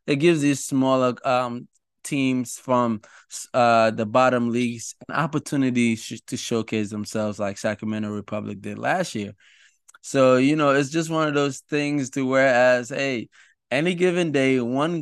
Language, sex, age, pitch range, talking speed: English, male, 20-39, 105-130 Hz, 155 wpm